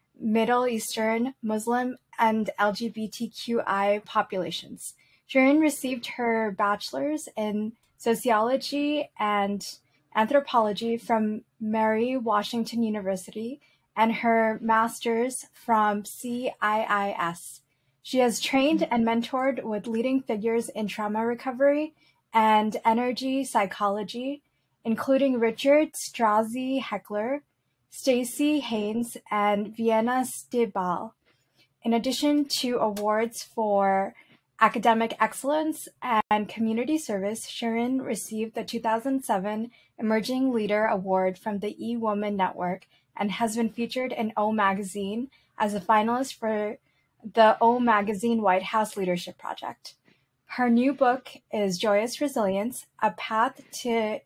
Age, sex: 10-29, female